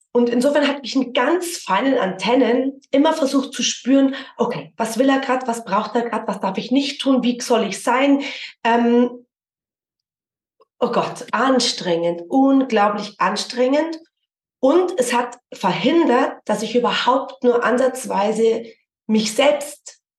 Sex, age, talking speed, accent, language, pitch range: female, 30-49, 140 wpm, German, German, 220-270 Hz